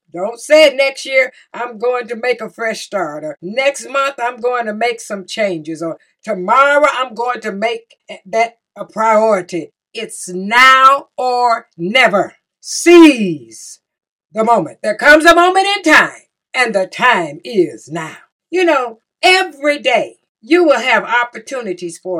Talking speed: 150 wpm